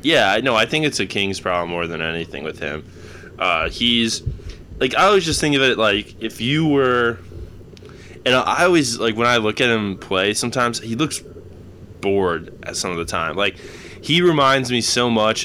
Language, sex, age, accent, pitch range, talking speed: English, male, 20-39, American, 90-115 Hz, 200 wpm